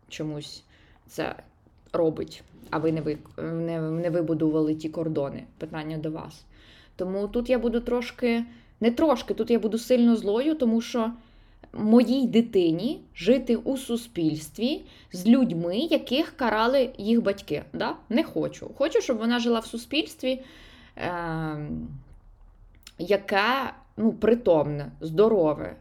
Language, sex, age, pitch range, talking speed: Ukrainian, female, 20-39, 165-235 Hz, 120 wpm